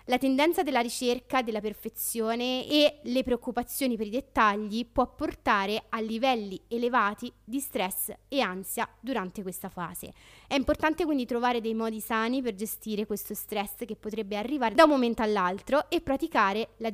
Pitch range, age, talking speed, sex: 215-285 Hz, 20-39, 160 wpm, female